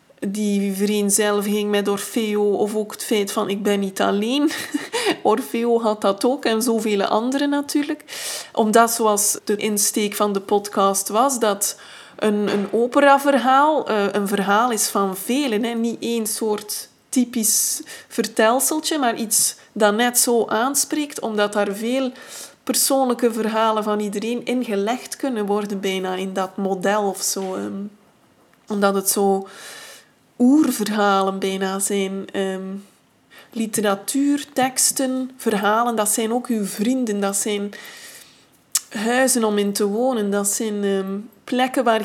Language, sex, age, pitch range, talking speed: Dutch, female, 20-39, 205-245 Hz, 135 wpm